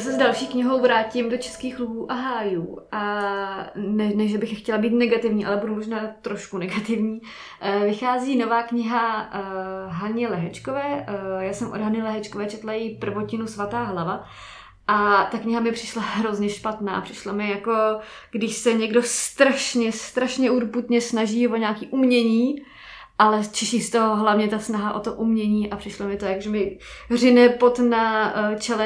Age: 20-39